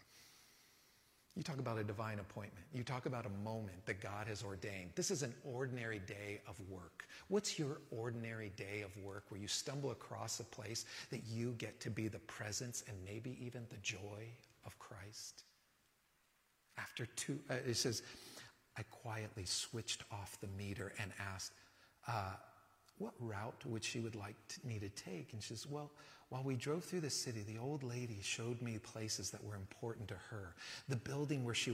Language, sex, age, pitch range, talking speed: English, male, 40-59, 105-130 Hz, 180 wpm